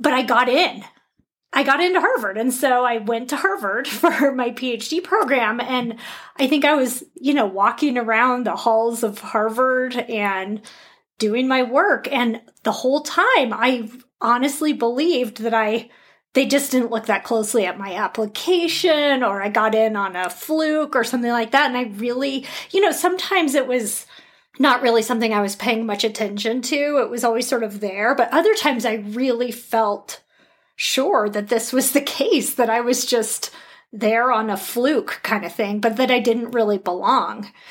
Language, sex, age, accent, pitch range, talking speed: English, female, 30-49, American, 225-275 Hz, 185 wpm